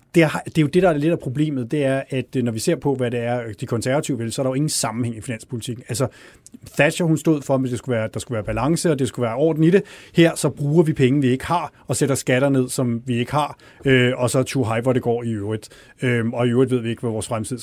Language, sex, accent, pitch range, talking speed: Danish, male, native, 120-140 Hz, 305 wpm